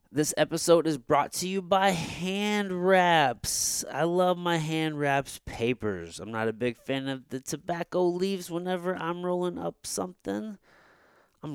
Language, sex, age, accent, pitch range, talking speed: English, male, 30-49, American, 110-160 Hz, 155 wpm